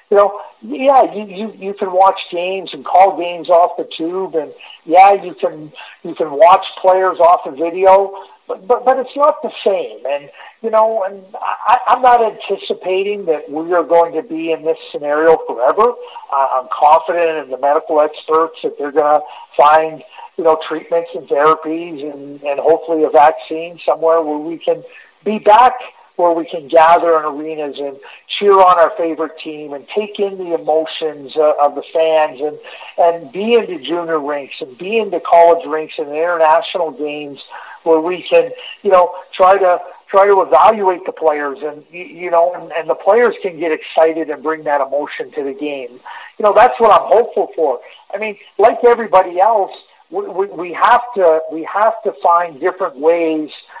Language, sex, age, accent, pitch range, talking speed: English, male, 50-69, American, 155-195 Hz, 185 wpm